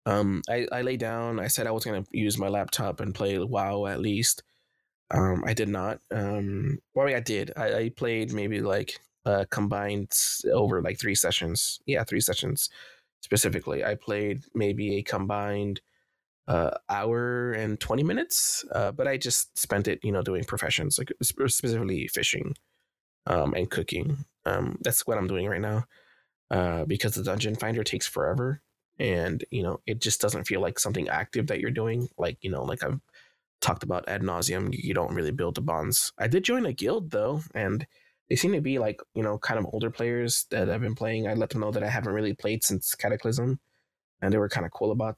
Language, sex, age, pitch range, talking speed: English, male, 20-39, 100-120 Hz, 200 wpm